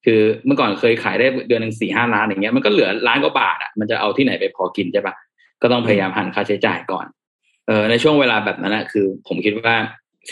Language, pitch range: Thai, 100-120 Hz